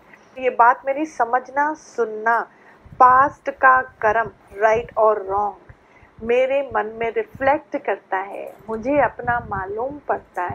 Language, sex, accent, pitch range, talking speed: Hindi, female, native, 235-290 Hz, 115 wpm